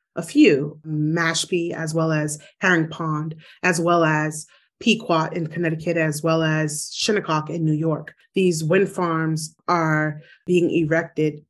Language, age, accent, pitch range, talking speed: English, 30-49, American, 155-180 Hz, 140 wpm